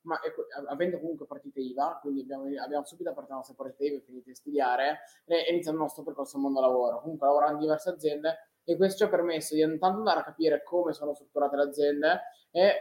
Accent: native